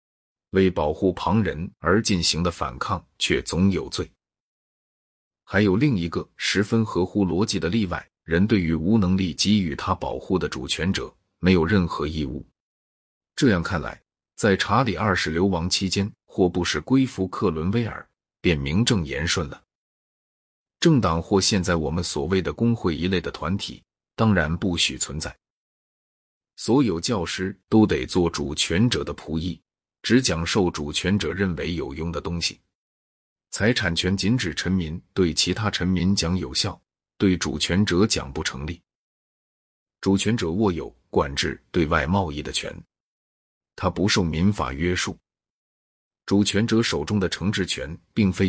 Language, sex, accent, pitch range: Chinese, male, native, 85-100 Hz